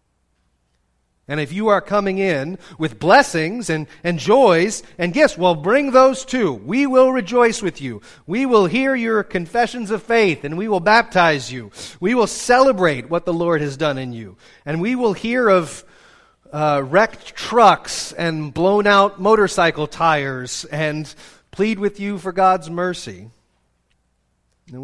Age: 40-59